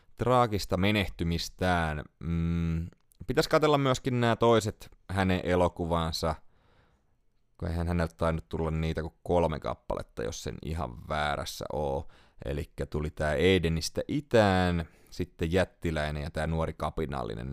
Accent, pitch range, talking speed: native, 80-100 Hz, 120 wpm